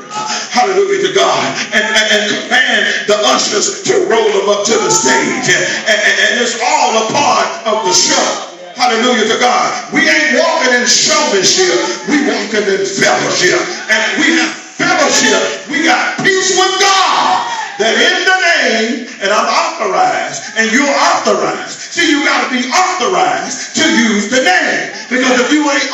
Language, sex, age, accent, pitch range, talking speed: English, male, 40-59, American, 250-370 Hz, 160 wpm